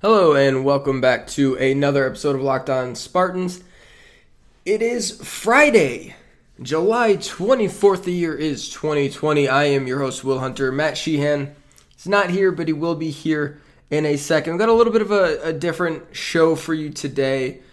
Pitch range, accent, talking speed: 130-160 Hz, American, 175 wpm